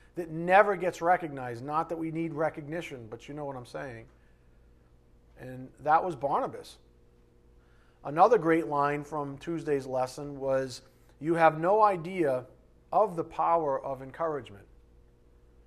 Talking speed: 135 wpm